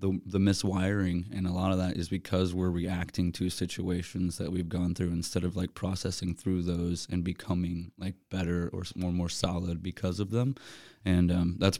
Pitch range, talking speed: 90-95 Hz, 195 wpm